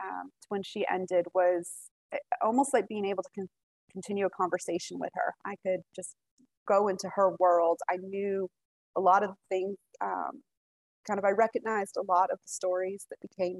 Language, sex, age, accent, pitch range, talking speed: English, female, 20-39, American, 170-195 Hz, 175 wpm